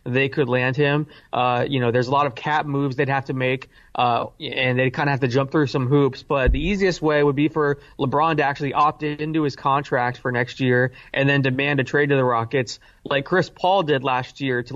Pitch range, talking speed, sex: 135-155 Hz, 245 wpm, male